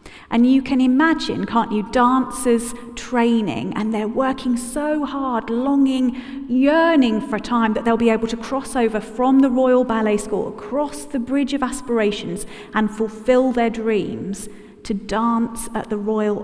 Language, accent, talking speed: English, British, 160 wpm